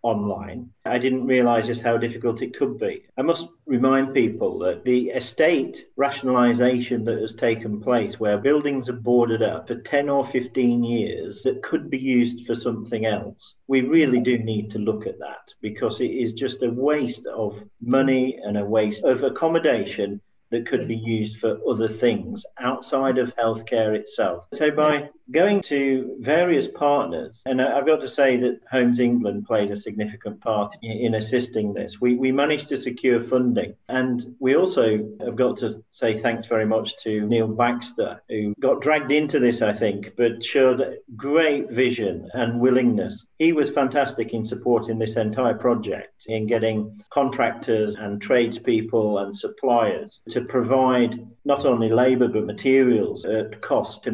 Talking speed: 165 wpm